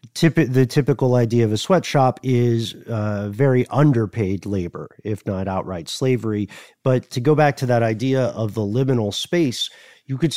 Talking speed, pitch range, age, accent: 170 wpm, 110-145 Hz, 40-59, American